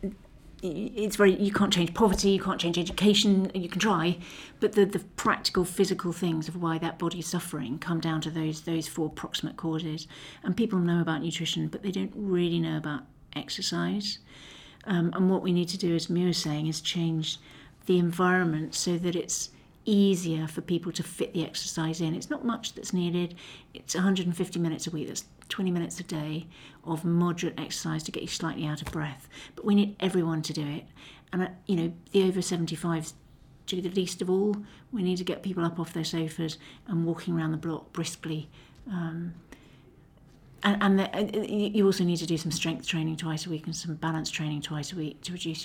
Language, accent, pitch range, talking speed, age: English, British, 160-185 Hz, 200 wpm, 50-69